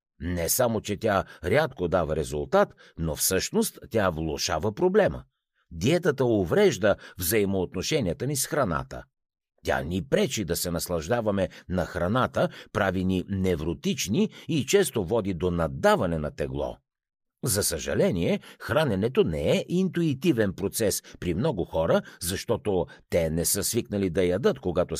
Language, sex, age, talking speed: Bulgarian, male, 60-79, 130 wpm